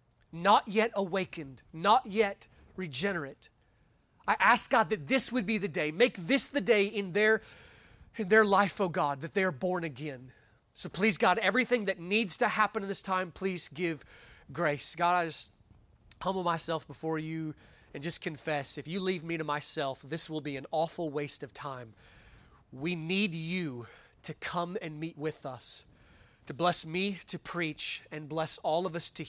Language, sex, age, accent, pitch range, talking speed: English, male, 30-49, American, 135-185 Hz, 180 wpm